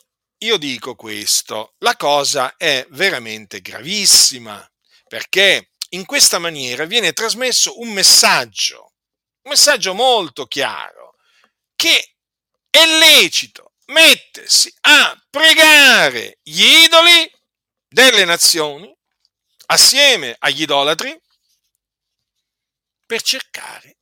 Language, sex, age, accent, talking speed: Italian, male, 50-69, native, 85 wpm